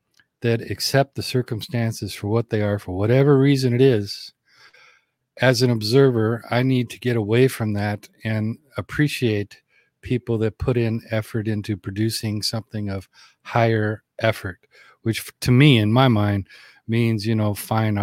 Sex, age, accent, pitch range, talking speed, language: male, 50-69, American, 105-130 Hz, 155 wpm, English